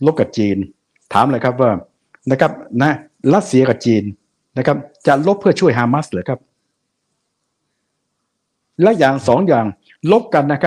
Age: 60-79